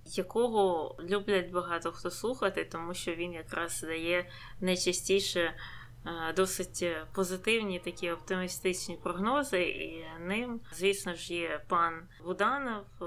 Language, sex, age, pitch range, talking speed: Ukrainian, female, 20-39, 170-200 Hz, 105 wpm